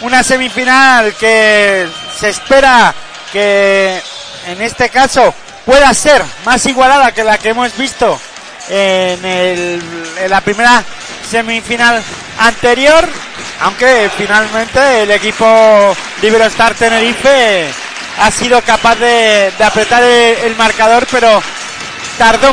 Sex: male